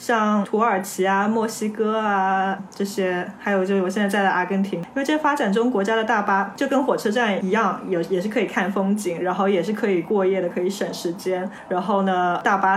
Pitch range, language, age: 195-245 Hz, Chinese, 20-39